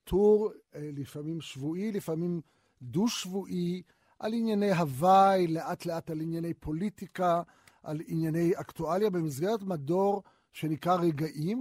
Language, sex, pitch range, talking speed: Hebrew, male, 155-200 Hz, 105 wpm